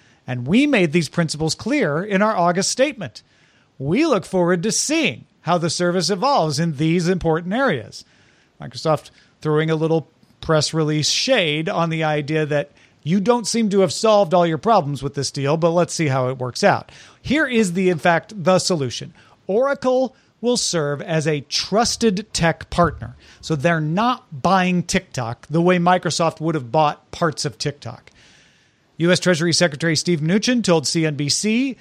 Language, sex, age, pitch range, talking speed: English, male, 40-59, 150-200 Hz, 170 wpm